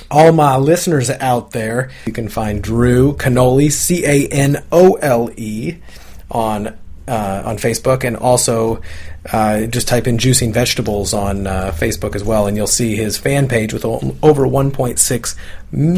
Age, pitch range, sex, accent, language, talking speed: 30-49, 105-130 Hz, male, American, English, 160 wpm